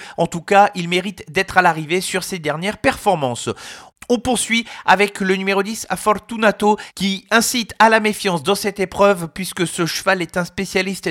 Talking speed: 185 wpm